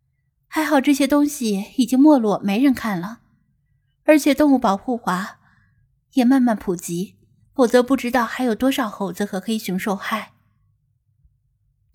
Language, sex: Chinese, female